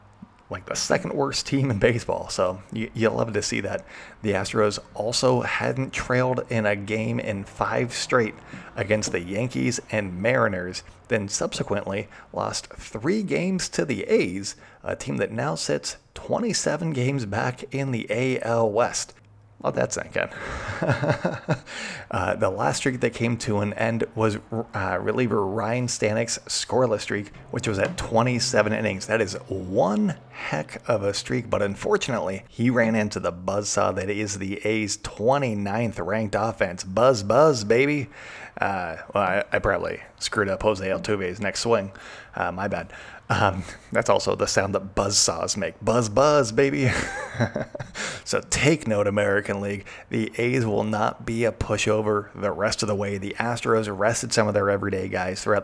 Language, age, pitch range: English, 30-49, 100-120 Hz